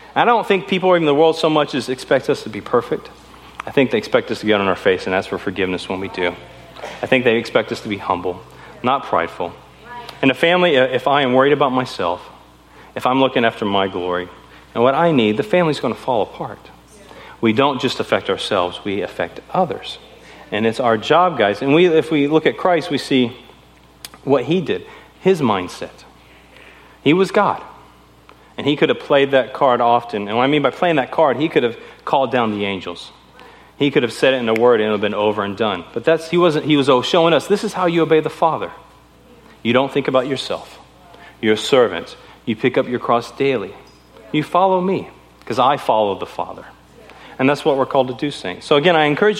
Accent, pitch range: American, 100-155 Hz